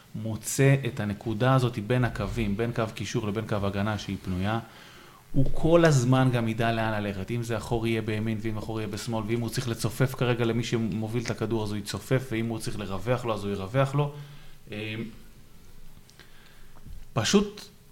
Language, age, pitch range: Hebrew, 20-39, 105-130 Hz